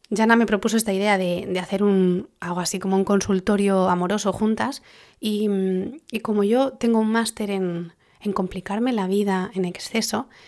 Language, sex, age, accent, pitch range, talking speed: Spanish, female, 20-39, Spanish, 190-225 Hz, 170 wpm